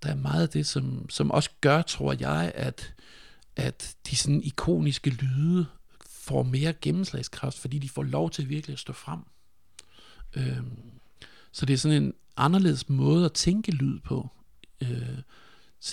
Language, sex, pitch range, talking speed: Danish, male, 115-145 Hz, 160 wpm